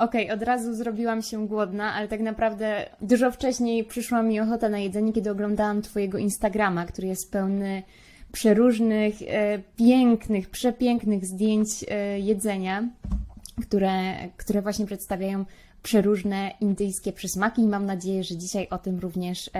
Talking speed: 130 wpm